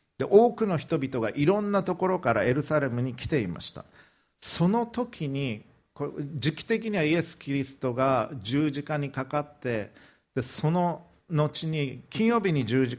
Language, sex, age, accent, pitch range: Japanese, male, 50-69, native, 120-160 Hz